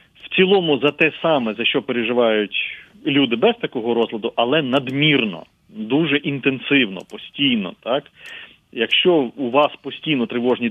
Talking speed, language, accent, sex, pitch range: 130 wpm, Ukrainian, native, male, 110-145 Hz